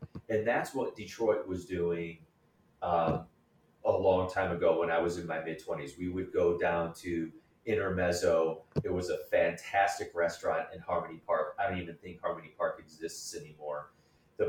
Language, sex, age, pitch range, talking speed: English, male, 30-49, 85-115 Hz, 165 wpm